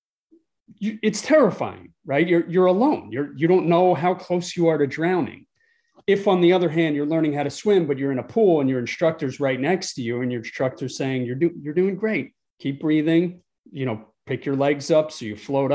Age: 30-49